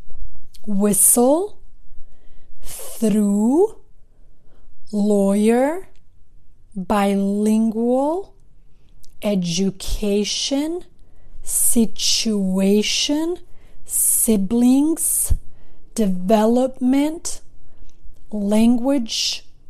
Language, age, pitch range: English, 30-49, 210-260 Hz